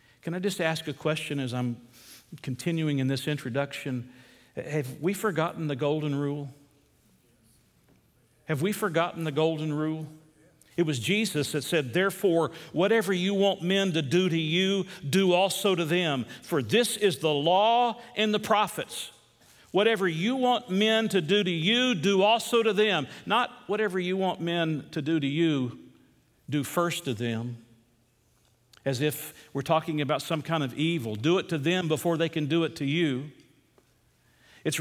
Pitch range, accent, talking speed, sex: 145-195 Hz, American, 165 wpm, male